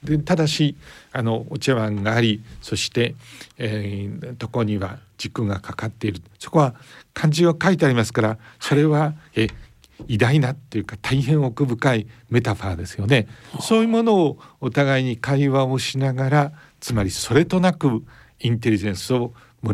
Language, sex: Japanese, male